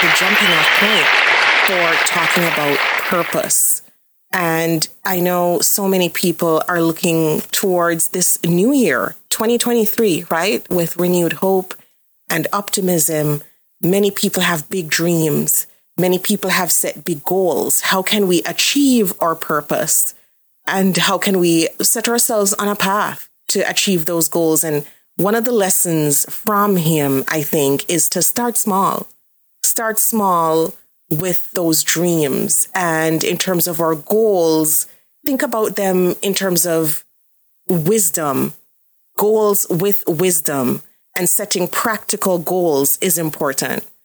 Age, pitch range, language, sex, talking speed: 30-49, 165-200 Hz, English, female, 130 wpm